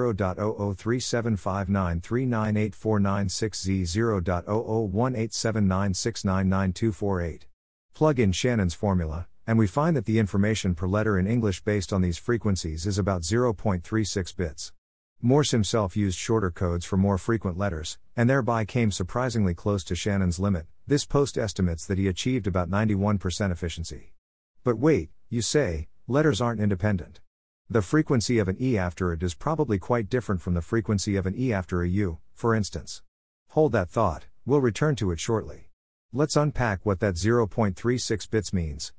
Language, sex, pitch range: English, male, 90-115 Hz